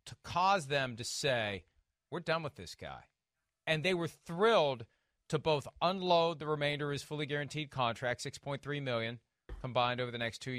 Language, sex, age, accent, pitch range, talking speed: English, male, 40-59, American, 125-160 Hz, 175 wpm